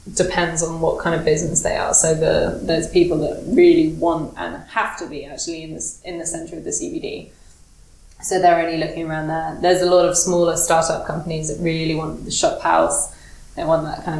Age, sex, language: 20-39, female, English